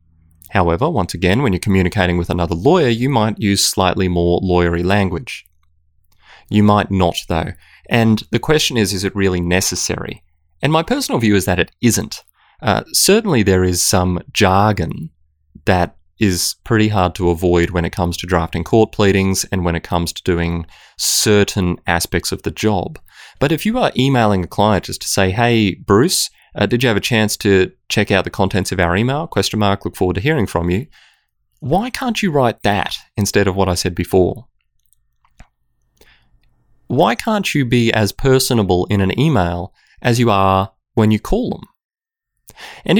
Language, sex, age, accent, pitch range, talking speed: English, male, 30-49, Australian, 90-115 Hz, 180 wpm